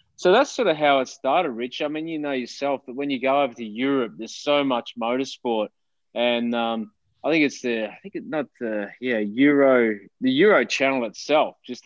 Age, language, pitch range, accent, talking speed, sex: 20-39, English, 115-155 Hz, Australian, 210 wpm, male